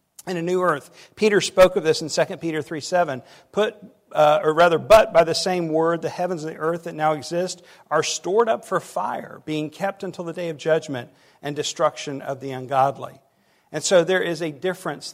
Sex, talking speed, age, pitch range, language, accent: male, 195 wpm, 50-69, 145-180 Hz, English, American